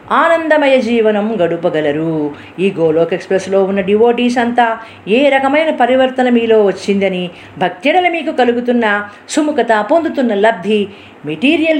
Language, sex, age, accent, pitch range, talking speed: Telugu, female, 50-69, native, 165-230 Hz, 105 wpm